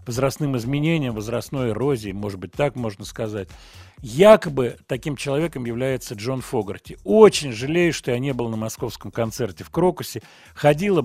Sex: male